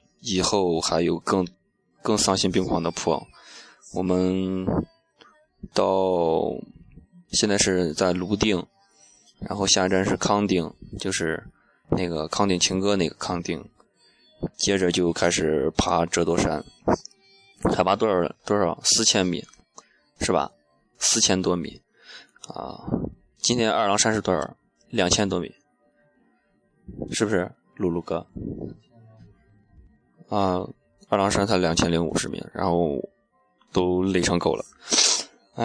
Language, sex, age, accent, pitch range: Chinese, male, 20-39, native, 85-100 Hz